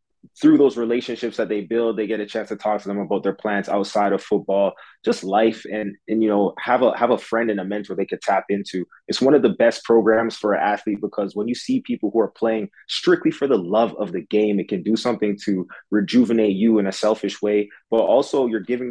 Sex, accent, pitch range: male, American, 100-110 Hz